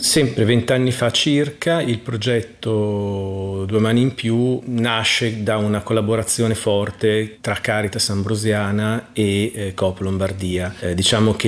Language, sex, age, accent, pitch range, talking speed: Italian, male, 30-49, native, 95-110 Hz, 130 wpm